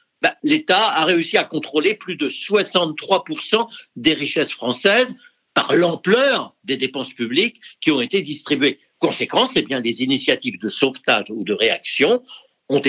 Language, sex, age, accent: French, male, 60-79, French